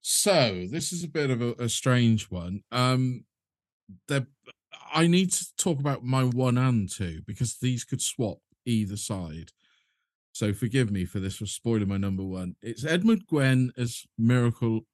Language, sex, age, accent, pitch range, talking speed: English, male, 40-59, British, 95-125 Hz, 165 wpm